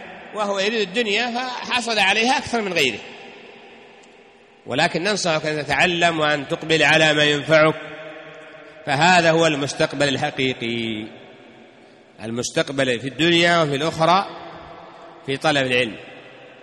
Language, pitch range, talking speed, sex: Arabic, 145-200 Hz, 105 wpm, male